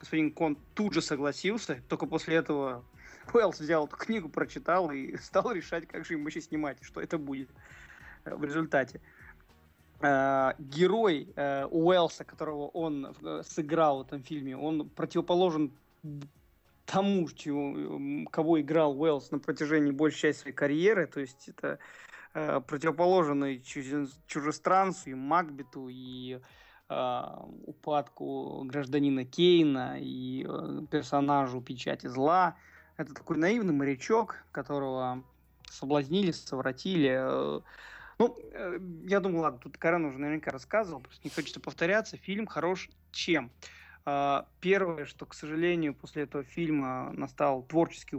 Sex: male